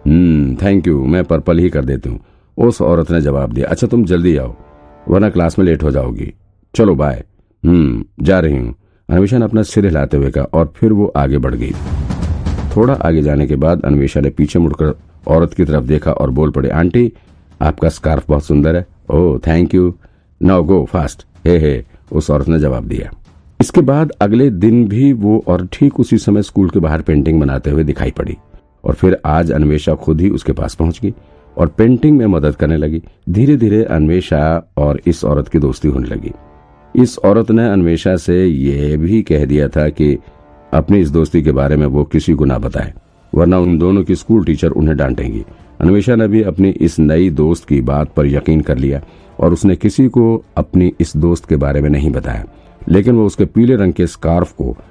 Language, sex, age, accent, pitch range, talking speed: Hindi, male, 50-69, native, 75-95 Hz, 200 wpm